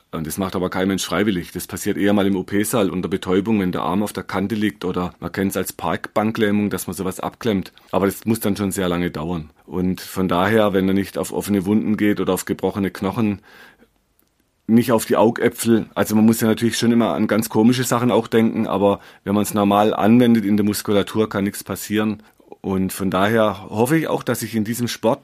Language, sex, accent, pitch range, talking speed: German, male, German, 100-120 Hz, 225 wpm